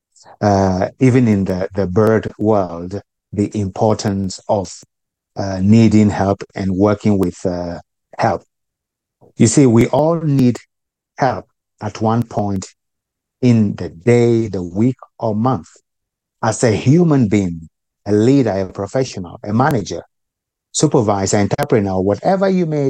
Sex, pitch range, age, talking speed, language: male, 100-130 Hz, 50-69, 130 wpm, English